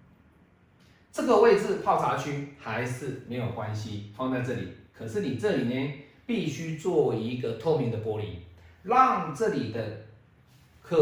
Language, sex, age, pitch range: Chinese, male, 40-59, 115-145 Hz